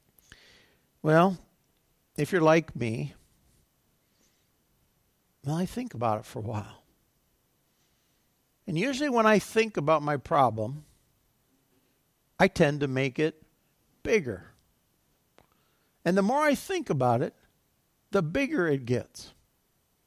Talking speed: 115 wpm